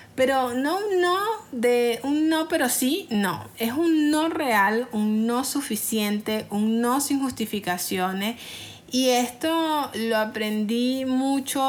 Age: 30-49